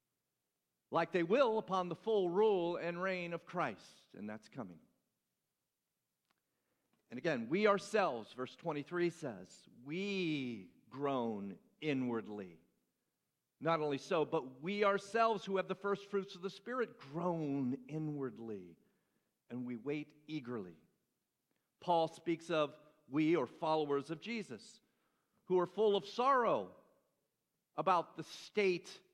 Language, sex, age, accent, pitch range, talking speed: English, male, 50-69, American, 135-185 Hz, 125 wpm